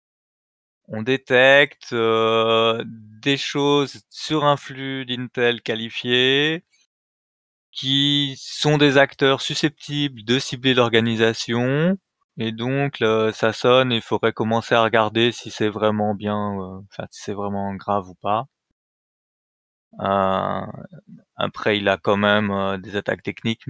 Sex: male